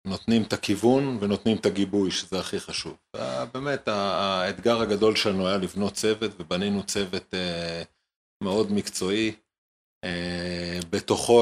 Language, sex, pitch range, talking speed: English, male, 90-105 Hz, 110 wpm